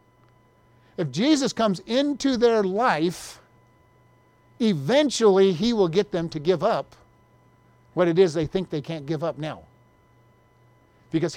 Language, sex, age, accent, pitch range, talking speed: English, male, 50-69, American, 130-190 Hz, 130 wpm